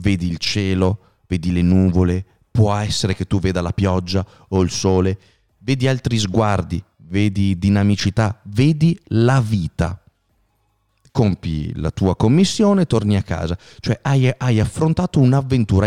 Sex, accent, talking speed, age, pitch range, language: male, native, 135 wpm, 30-49, 95-125 Hz, Italian